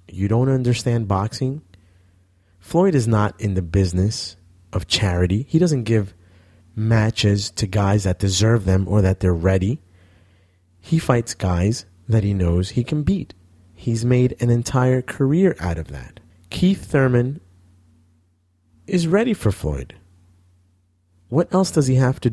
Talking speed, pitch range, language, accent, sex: 145 wpm, 90-120 Hz, English, American, male